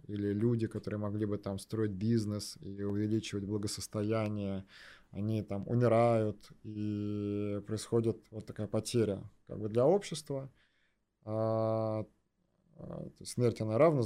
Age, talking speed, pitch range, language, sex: 20-39, 110 wpm, 105-120 Hz, Russian, male